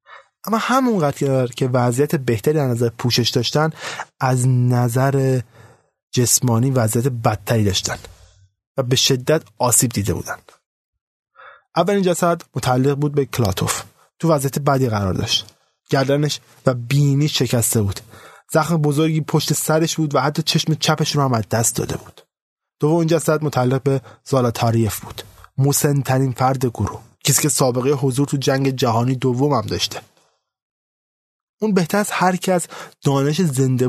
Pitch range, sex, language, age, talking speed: 120-155 Hz, male, Persian, 20-39, 135 wpm